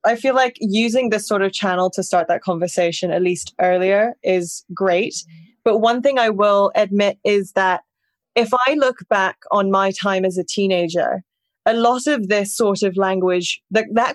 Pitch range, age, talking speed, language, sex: 190-245 Hz, 20-39, 185 wpm, English, female